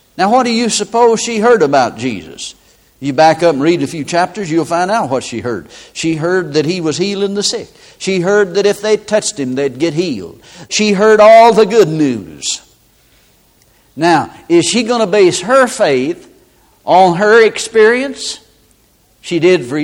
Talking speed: 185 wpm